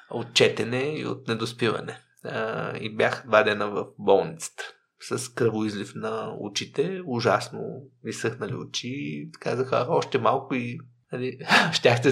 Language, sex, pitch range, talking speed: Bulgarian, male, 120-190 Hz, 120 wpm